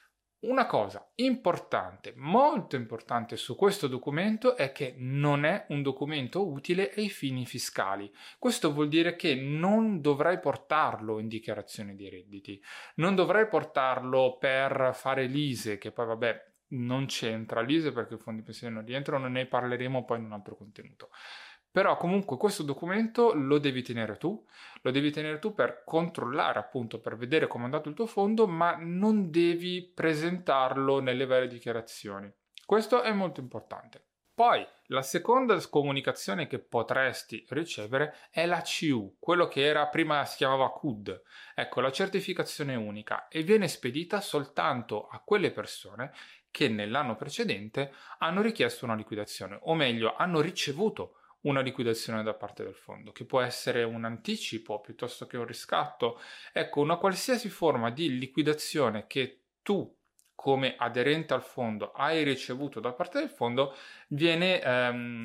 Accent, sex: native, male